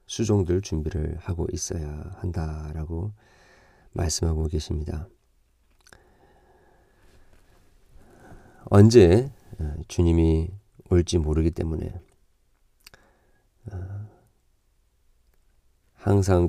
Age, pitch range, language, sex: 40-59, 80-100 Hz, Korean, male